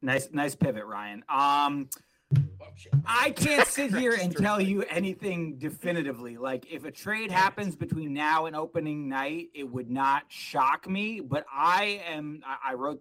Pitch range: 130-165 Hz